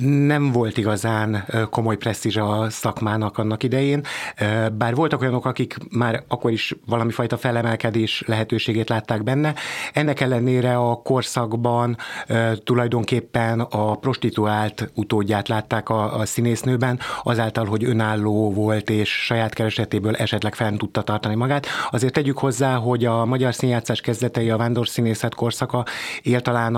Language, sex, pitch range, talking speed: Hungarian, male, 110-125 Hz, 130 wpm